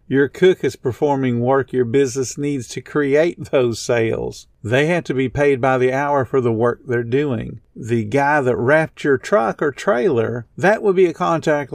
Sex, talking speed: male, 195 wpm